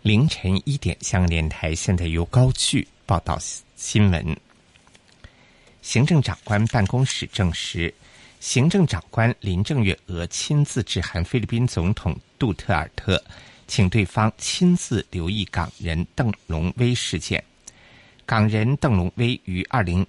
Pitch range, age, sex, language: 90-120 Hz, 50-69, male, Chinese